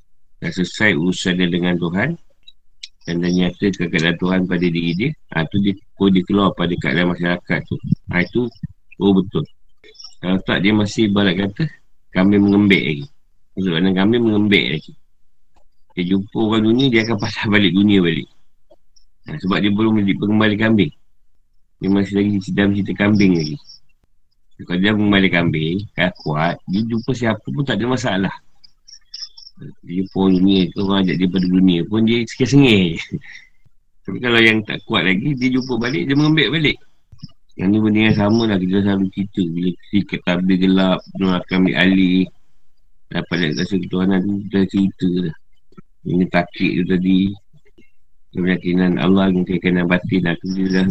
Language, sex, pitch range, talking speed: Malay, male, 90-110 Hz, 160 wpm